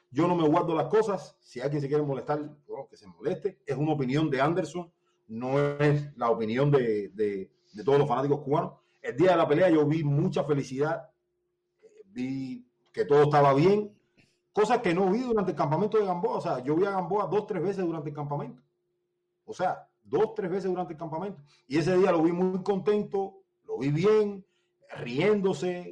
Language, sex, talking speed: Spanish, male, 200 wpm